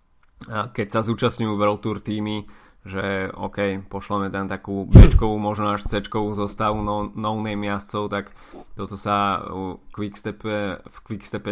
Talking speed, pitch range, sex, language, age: 120 wpm, 100-110 Hz, male, Slovak, 20-39